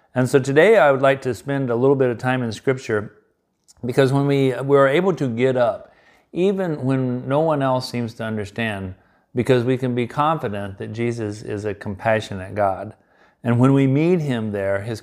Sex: male